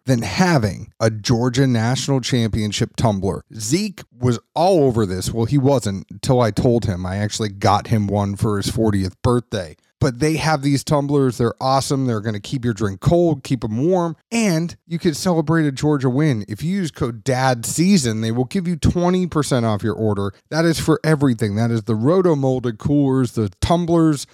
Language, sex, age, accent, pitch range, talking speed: English, male, 30-49, American, 110-150 Hz, 185 wpm